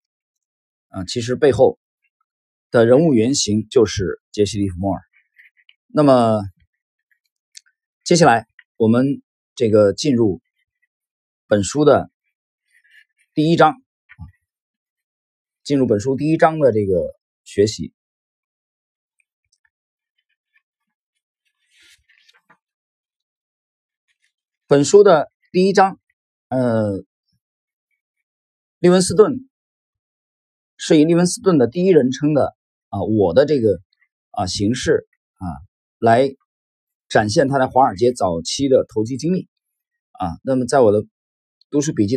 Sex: male